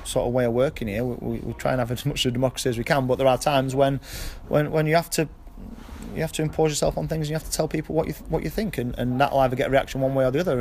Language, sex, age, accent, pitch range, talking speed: English, male, 30-49, British, 120-145 Hz, 345 wpm